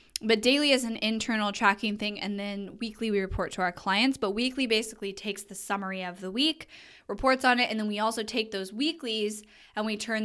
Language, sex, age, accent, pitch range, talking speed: English, female, 10-29, American, 195-230 Hz, 215 wpm